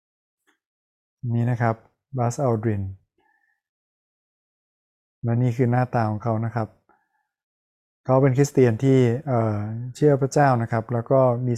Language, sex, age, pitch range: Thai, male, 20-39, 115-140 Hz